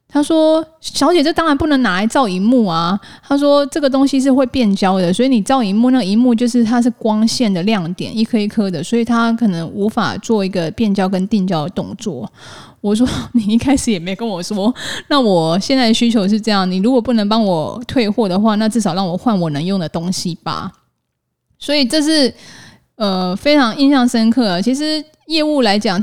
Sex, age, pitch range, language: female, 10-29, 190-250 Hz, Chinese